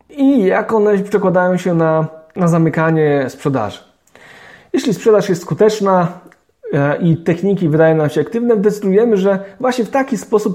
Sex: male